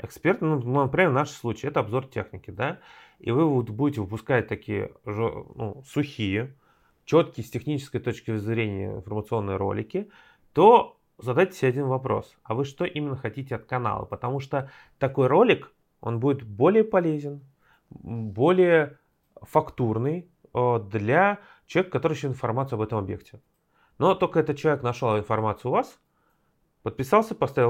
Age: 30-49